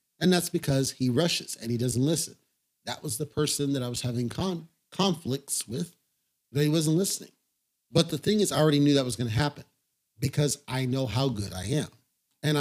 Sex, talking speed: male, 210 wpm